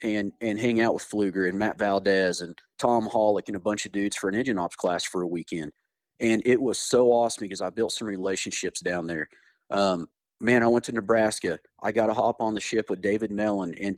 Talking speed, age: 230 wpm, 40-59